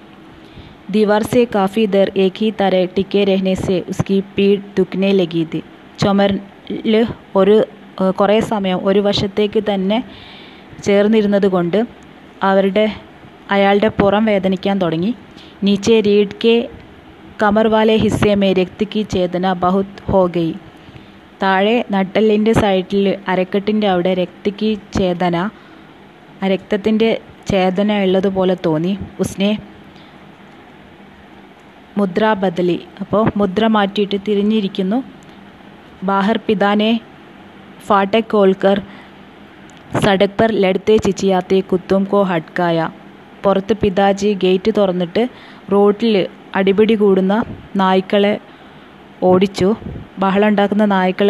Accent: native